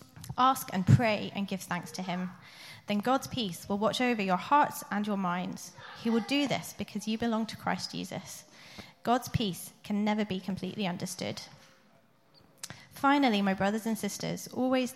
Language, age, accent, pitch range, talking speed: English, 20-39, British, 185-235 Hz, 170 wpm